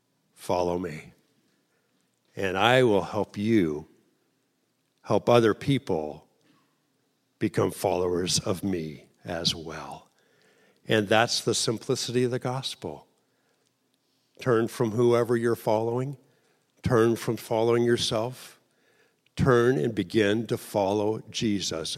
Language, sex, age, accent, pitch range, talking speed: English, male, 60-79, American, 90-115 Hz, 105 wpm